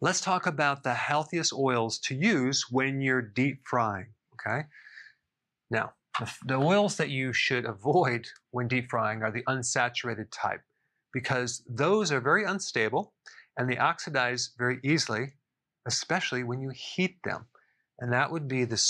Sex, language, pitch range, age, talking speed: male, English, 120-150 Hz, 40-59, 150 wpm